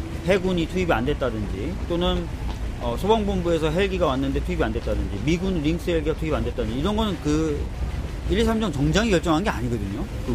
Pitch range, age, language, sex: 125-180 Hz, 40-59, Korean, male